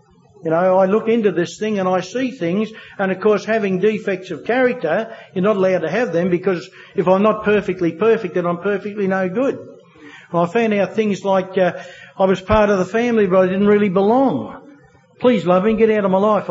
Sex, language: male, English